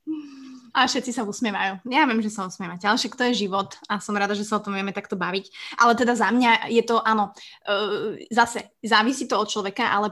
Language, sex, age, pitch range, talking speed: Slovak, female, 20-39, 205-235 Hz, 220 wpm